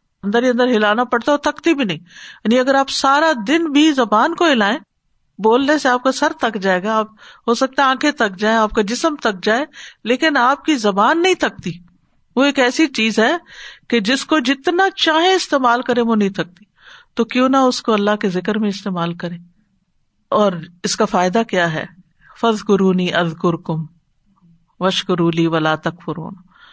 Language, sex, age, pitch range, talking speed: Urdu, female, 50-69, 185-275 Hz, 180 wpm